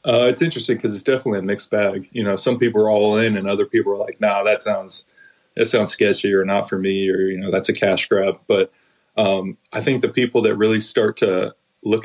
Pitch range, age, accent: 100-120 Hz, 20-39, American